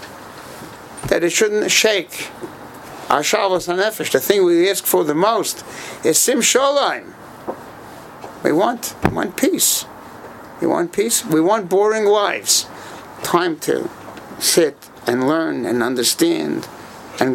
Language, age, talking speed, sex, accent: English, 60-79, 120 wpm, male, American